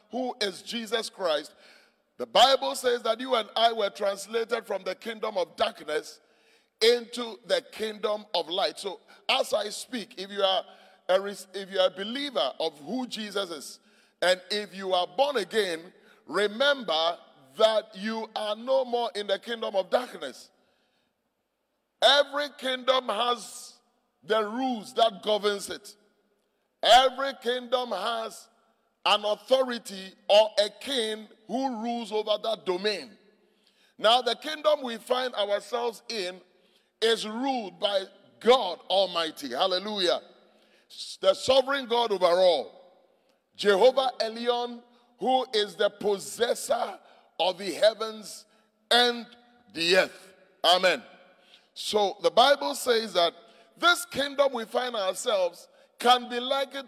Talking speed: 130 wpm